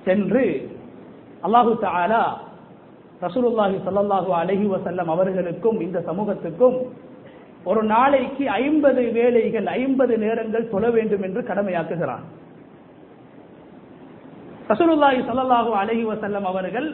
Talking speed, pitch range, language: 70 wpm, 195-270 Hz, English